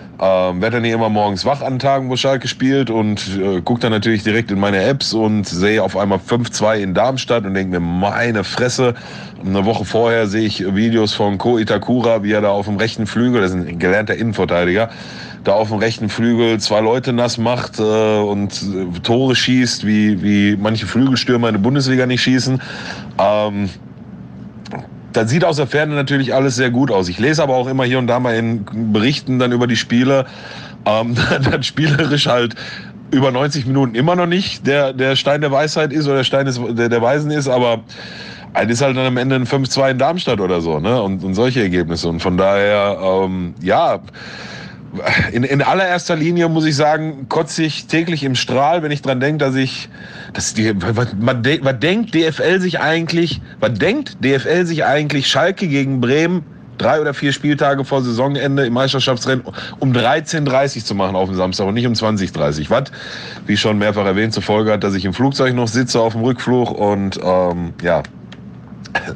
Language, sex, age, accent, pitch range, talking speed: German, male, 30-49, German, 105-135 Hz, 190 wpm